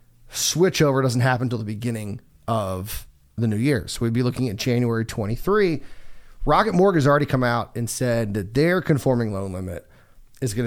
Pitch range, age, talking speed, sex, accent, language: 115-145 Hz, 30-49, 180 wpm, male, American, English